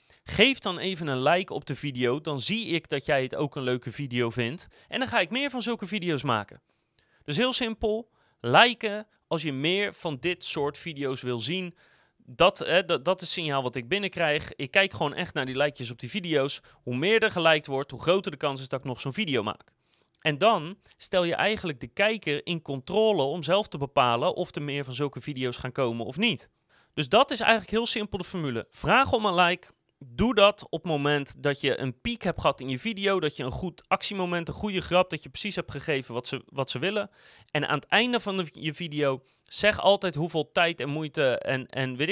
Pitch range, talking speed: 135-190 Hz, 220 wpm